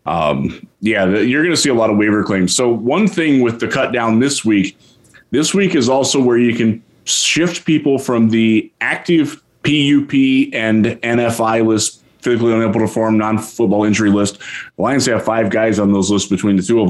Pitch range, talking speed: 105-130 Hz, 190 wpm